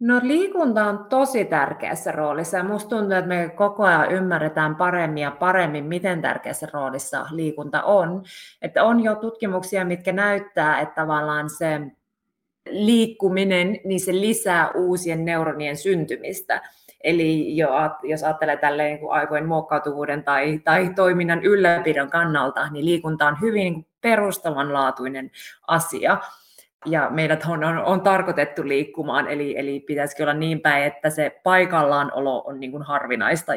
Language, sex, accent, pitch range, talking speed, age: Finnish, female, native, 150-190 Hz, 130 wpm, 20-39